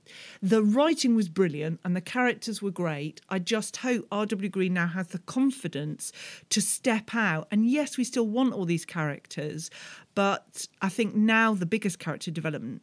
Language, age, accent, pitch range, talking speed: English, 40-59, British, 155-215 Hz, 175 wpm